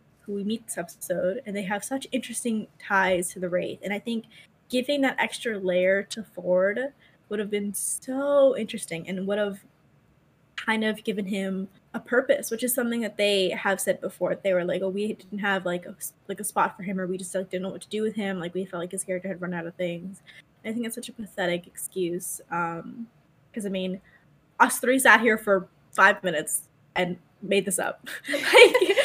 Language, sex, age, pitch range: English, female, 10-29, 185-240 Hz